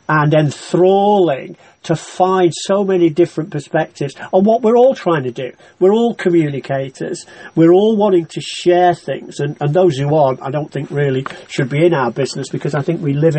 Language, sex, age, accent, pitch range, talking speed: English, male, 40-59, British, 140-175 Hz, 195 wpm